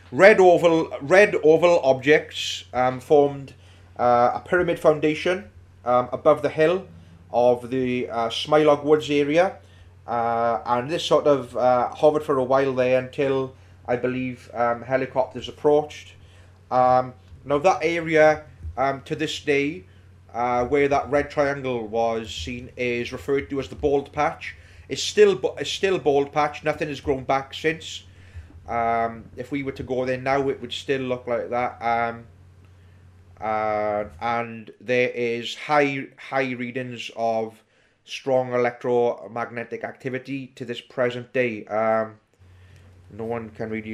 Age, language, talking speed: 30-49, English, 145 wpm